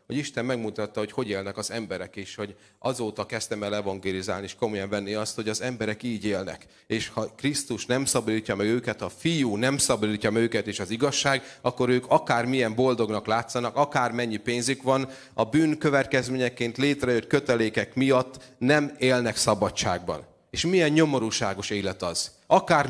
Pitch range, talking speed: 110-140 Hz, 165 wpm